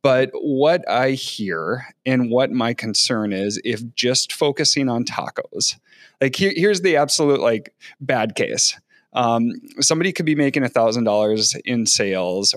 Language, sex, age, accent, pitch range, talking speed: English, male, 30-49, American, 115-140 Hz, 150 wpm